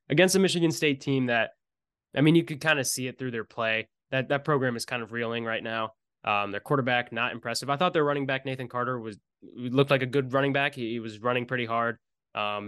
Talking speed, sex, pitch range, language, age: 245 wpm, male, 115-130 Hz, English, 20-39